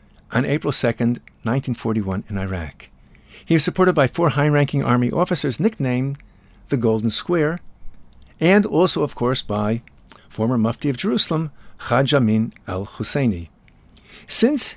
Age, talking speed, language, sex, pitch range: 50-69, 125 wpm, English, male, 110-150 Hz